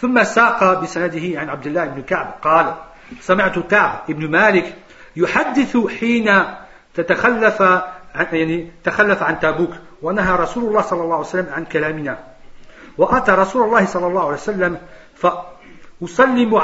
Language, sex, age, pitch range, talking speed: French, male, 50-69, 165-200 Hz, 135 wpm